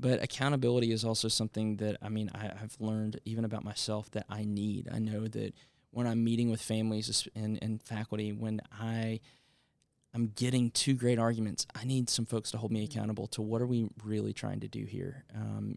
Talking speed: 200 wpm